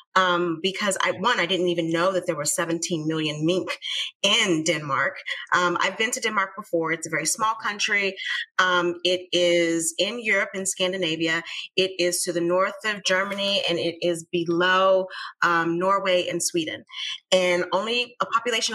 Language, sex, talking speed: English, female, 170 wpm